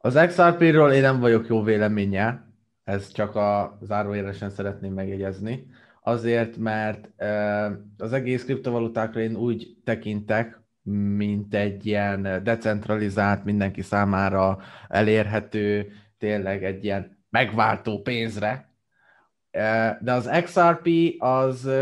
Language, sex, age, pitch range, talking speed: Hungarian, male, 20-39, 105-125 Hz, 100 wpm